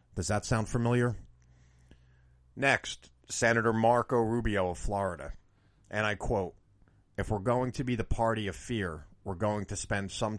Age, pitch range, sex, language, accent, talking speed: 40-59, 95-110 Hz, male, English, American, 155 wpm